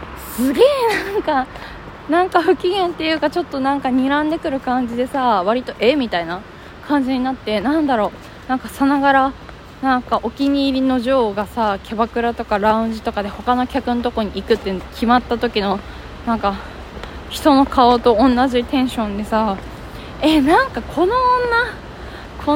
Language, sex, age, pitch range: Japanese, female, 20-39, 220-305 Hz